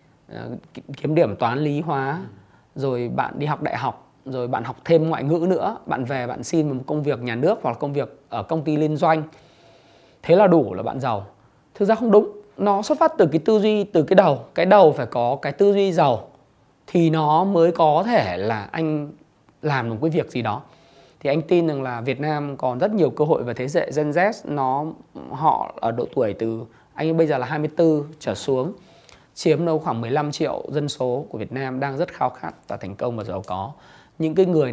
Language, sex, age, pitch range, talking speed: Vietnamese, male, 20-39, 125-160 Hz, 225 wpm